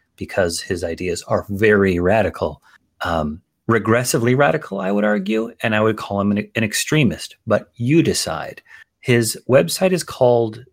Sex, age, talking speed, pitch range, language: male, 30-49, 150 wpm, 100-120 Hz, English